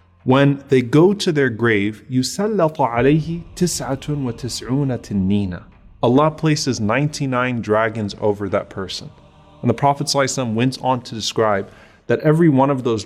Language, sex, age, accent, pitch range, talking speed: English, male, 30-49, American, 110-145 Hz, 130 wpm